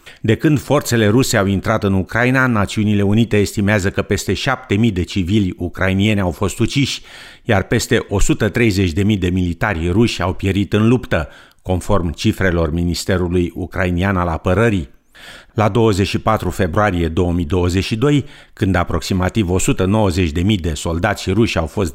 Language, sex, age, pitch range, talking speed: Romanian, male, 50-69, 90-115 Hz, 130 wpm